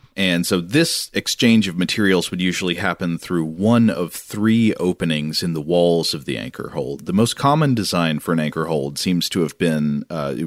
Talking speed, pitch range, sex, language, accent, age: 195 wpm, 85-110 Hz, male, English, American, 30-49